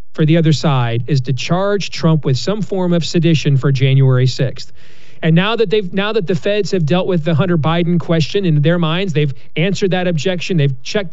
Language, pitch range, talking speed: English, 150-195 Hz, 215 wpm